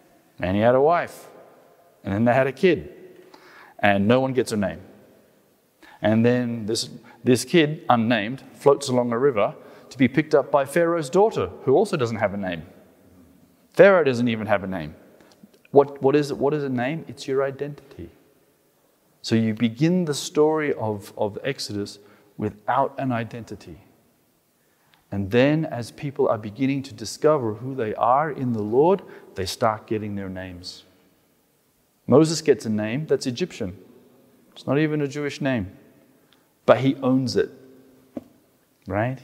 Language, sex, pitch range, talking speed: English, male, 105-145 Hz, 160 wpm